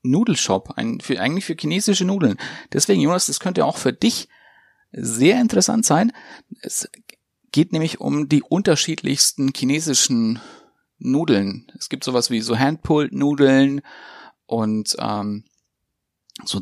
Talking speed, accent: 115 wpm, German